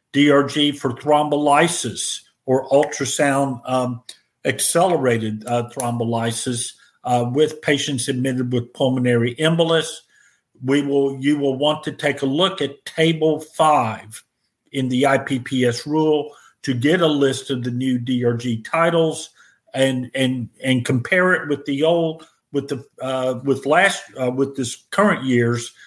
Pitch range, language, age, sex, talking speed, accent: 130-150 Hz, English, 50-69, male, 135 wpm, American